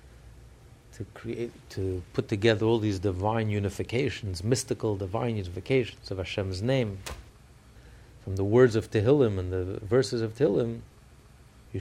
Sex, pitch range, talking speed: male, 100-125 Hz, 130 wpm